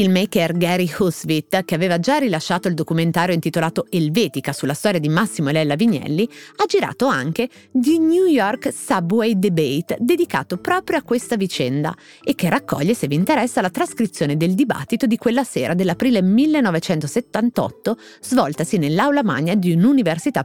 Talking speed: 155 wpm